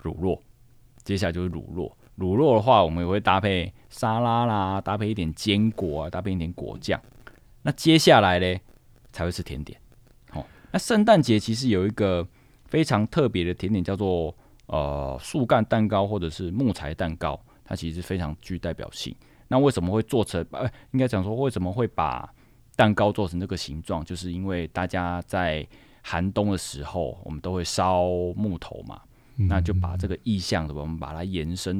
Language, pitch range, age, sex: Chinese, 85-110 Hz, 20-39, male